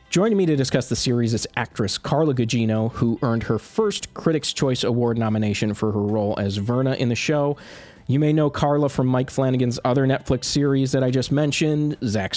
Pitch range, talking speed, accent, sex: 110-135 Hz, 200 wpm, American, male